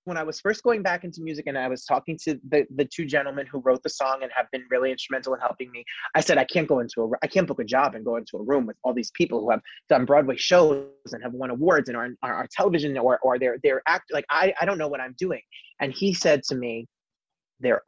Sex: male